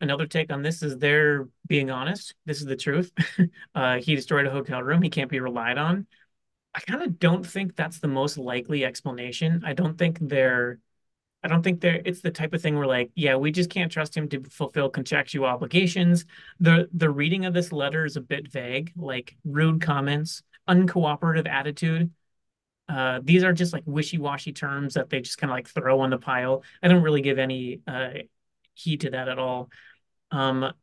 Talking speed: 200 wpm